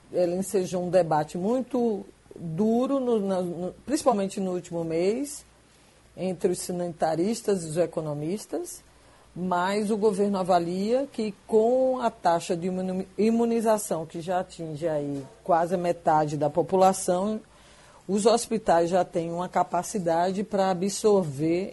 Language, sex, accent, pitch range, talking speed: Portuguese, female, Brazilian, 170-205 Hz, 110 wpm